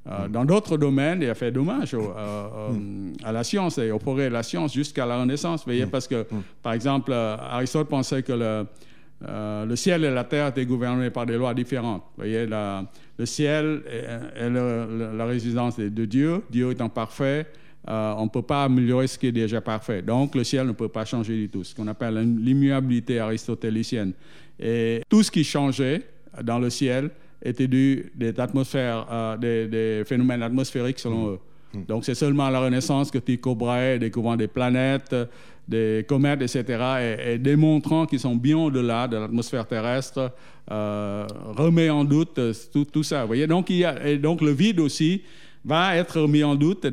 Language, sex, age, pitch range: French, male, 50-69, 115-140 Hz